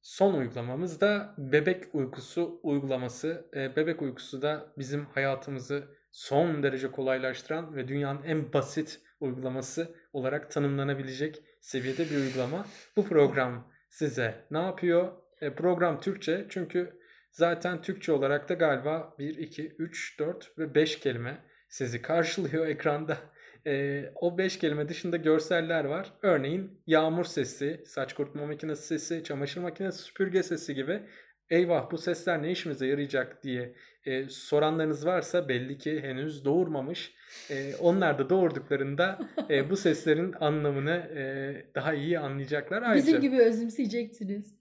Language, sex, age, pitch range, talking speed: Turkish, male, 20-39, 140-175 Hz, 130 wpm